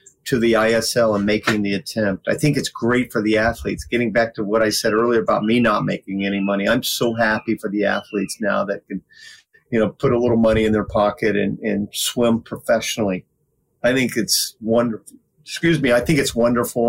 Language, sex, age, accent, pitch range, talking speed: English, male, 40-59, American, 110-125 Hz, 210 wpm